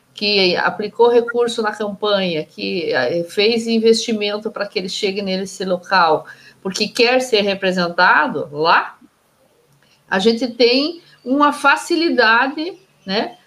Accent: Brazilian